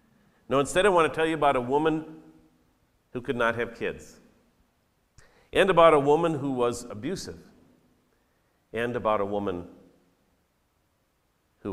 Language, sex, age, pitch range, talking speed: English, male, 50-69, 115-155 Hz, 140 wpm